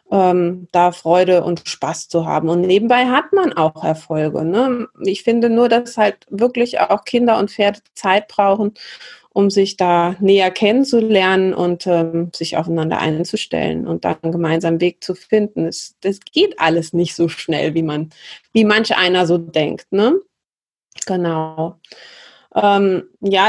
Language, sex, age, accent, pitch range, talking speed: German, female, 30-49, German, 175-225 Hz, 155 wpm